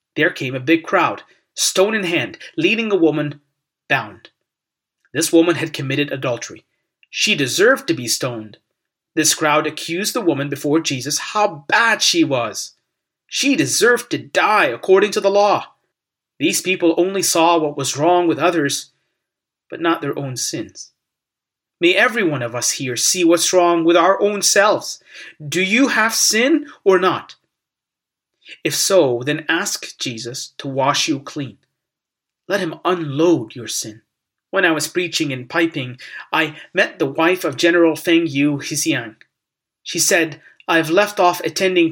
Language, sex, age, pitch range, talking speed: English, male, 30-49, 145-185 Hz, 155 wpm